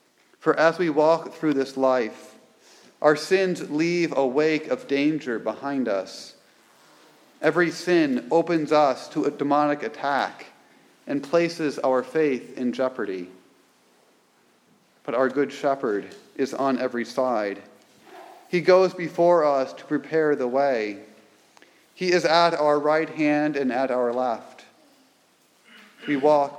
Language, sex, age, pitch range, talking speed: English, male, 40-59, 130-160 Hz, 130 wpm